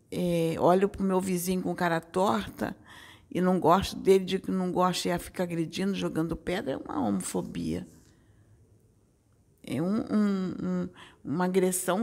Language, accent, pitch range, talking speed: Portuguese, Brazilian, 155-240 Hz, 160 wpm